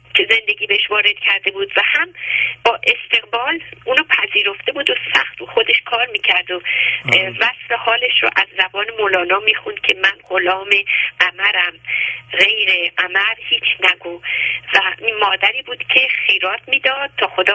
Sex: female